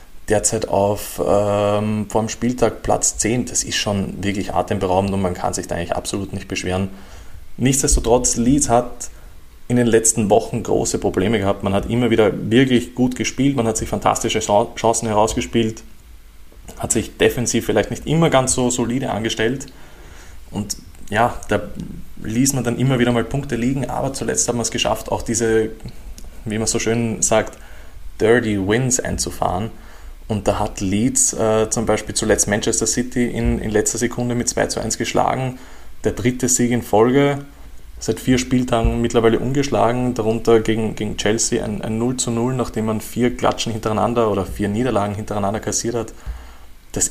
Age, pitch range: 20-39, 100-120 Hz